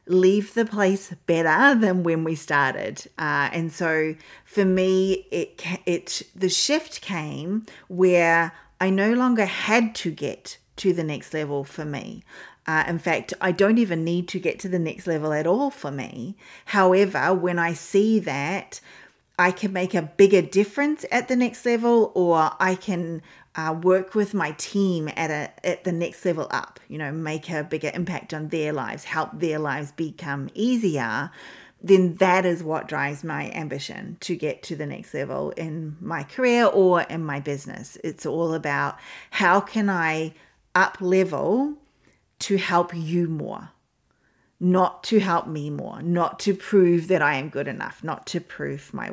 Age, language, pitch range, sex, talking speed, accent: 40-59, English, 160-195 Hz, female, 170 wpm, Australian